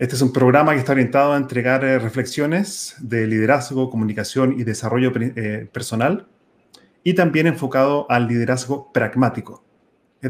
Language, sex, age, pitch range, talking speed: Spanish, male, 30-49, 120-145 Hz, 135 wpm